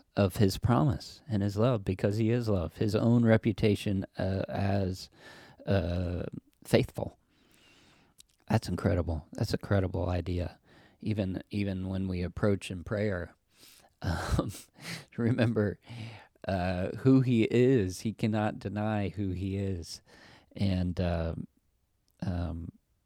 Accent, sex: American, male